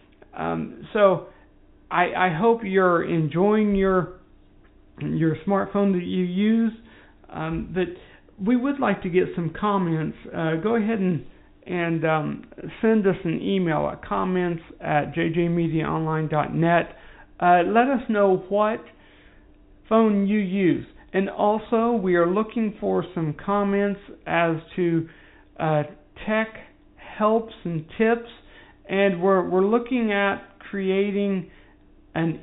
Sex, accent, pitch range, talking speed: male, American, 165-210 Hz, 125 wpm